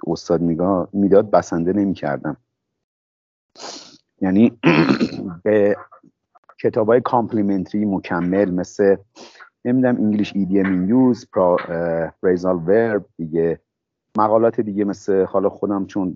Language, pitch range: Persian, 85-110 Hz